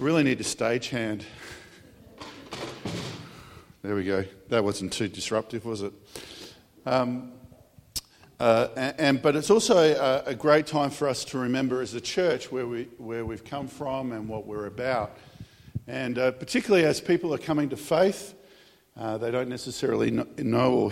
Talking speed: 165 wpm